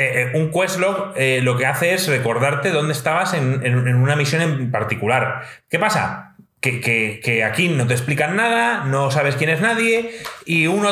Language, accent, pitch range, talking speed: Spanish, Spanish, 130-205 Hz, 190 wpm